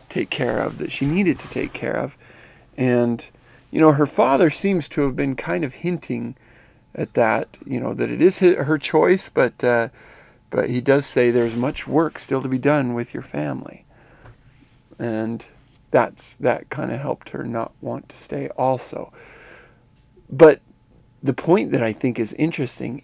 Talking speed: 175 wpm